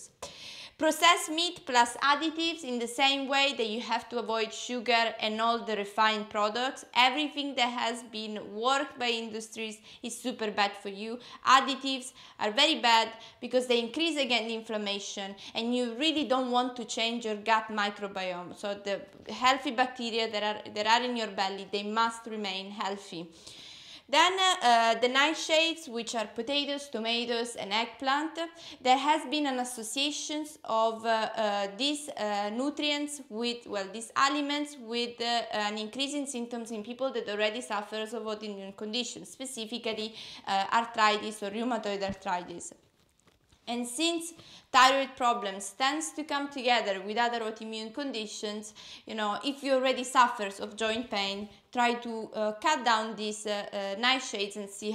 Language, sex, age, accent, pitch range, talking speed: English, female, 20-39, Italian, 215-265 Hz, 155 wpm